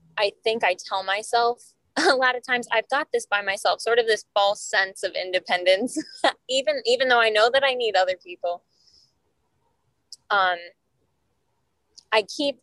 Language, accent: English, American